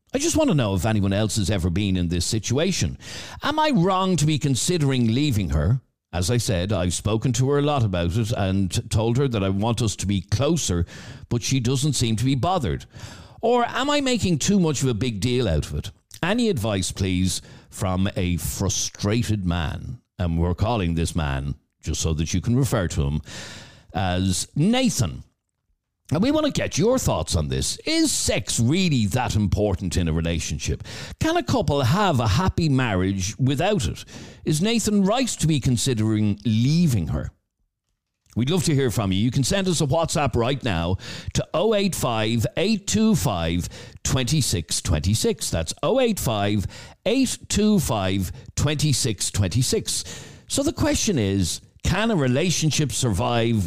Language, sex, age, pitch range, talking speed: English, male, 50-69, 95-145 Hz, 160 wpm